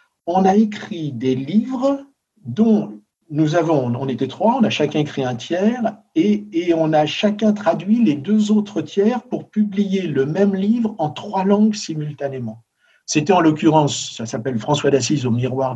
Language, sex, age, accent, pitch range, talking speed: English, male, 60-79, French, 130-215 Hz, 170 wpm